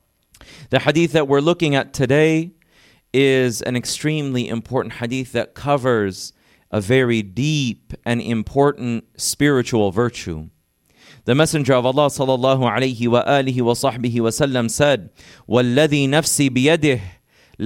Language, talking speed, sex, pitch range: English, 120 wpm, male, 120-150 Hz